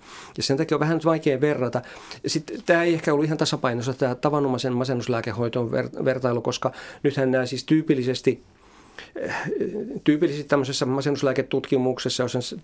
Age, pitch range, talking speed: 40-59, 125-150 Hz, 115 wpm